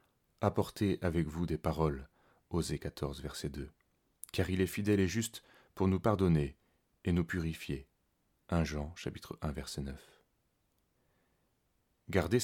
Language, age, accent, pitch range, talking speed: French, 30-49, French, 80-95 Hz, 155 wpm